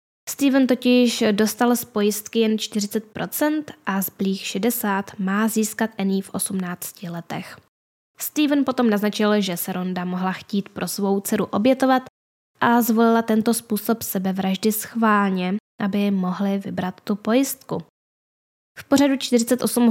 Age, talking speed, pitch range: 10-29, 130 wpm, 195-225 Hz